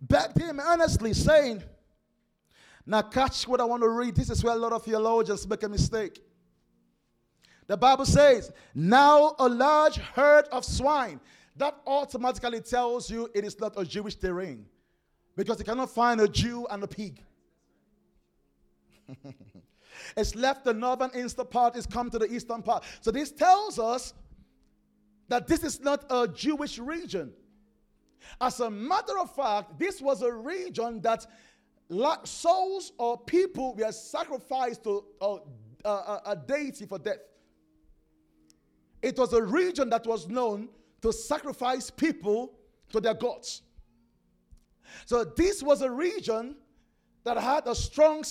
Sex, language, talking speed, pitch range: male, English, 145 wpm, 205-270 Hz